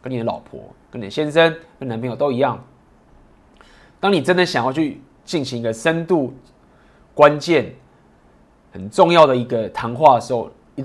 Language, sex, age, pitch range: Chinese, male, 20-39, 115-160 Hz